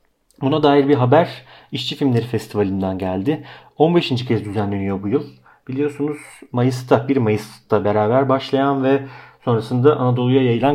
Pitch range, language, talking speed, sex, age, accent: 115-140 Hz, Turkish, 130 wpm, male, 40-59, native